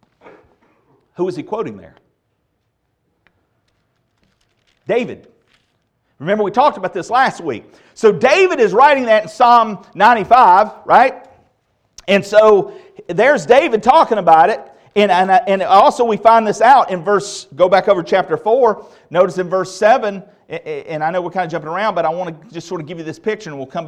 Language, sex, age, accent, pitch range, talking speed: English, male, 40-59, American, 150-220 Hz, 180 wpm